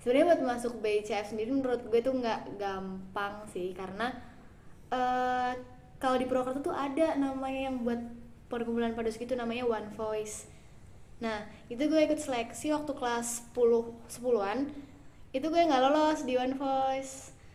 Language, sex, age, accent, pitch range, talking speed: Indonesian, female, 10-29, native, 215-265 Hz, 145 wpm